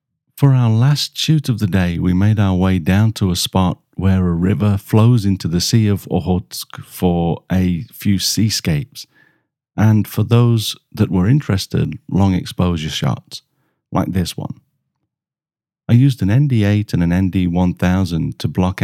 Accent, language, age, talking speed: British, English, 50-69, 155 wpm